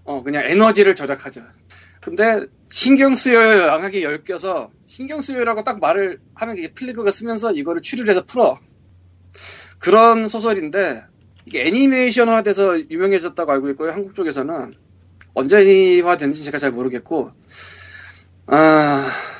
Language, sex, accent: Korean, male, native